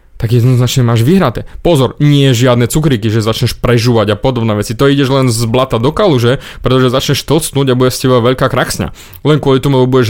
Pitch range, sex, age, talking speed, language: 120-150 Hz, male, 30-49, 210 wpm, Slovak